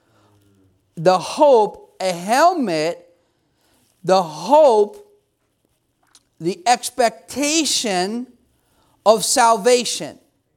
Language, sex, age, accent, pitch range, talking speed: English, male, 40-59, American, 210-290 Hz, 55 wpm